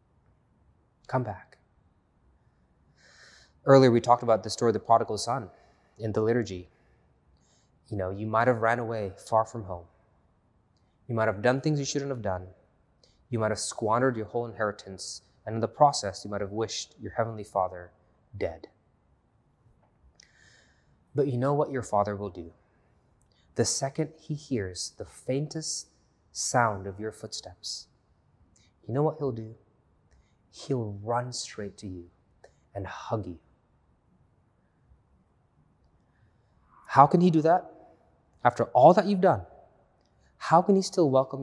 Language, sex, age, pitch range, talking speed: English, male, 20-39, 100-135 Hz, 145 wpm